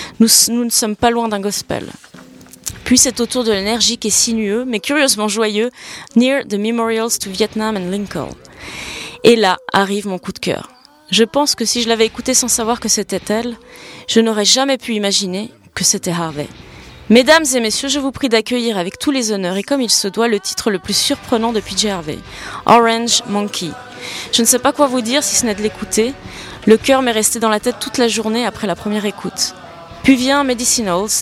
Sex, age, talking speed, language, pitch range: female, 20-39, 215 wpm, French, 200-245 Hz